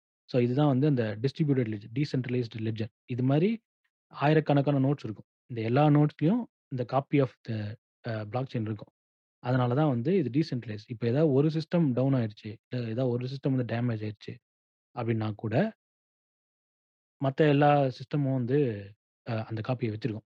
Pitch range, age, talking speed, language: 115-145 Hz, 30-49, 150 wpm, Tamil